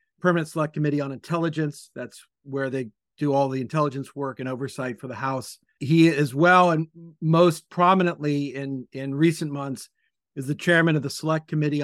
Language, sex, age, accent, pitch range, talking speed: English, male, 50-69, American, 135-165 Hz, 175 wpm